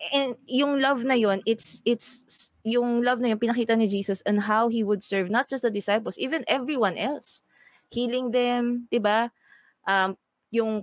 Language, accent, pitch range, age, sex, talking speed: English, Filipino, 185-250 Hz, 20-39, female, 170 wpm